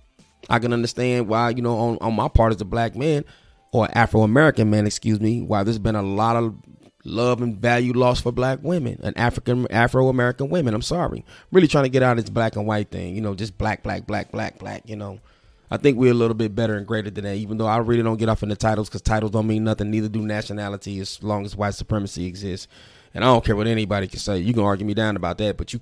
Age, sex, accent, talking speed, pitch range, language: 30-49, male, American, 260 wpm, 100-115 Hz, English